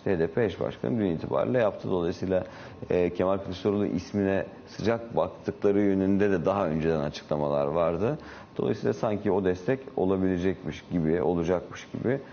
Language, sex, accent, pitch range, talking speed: Turkish, male, native, 85-95 Hz, 125 wpm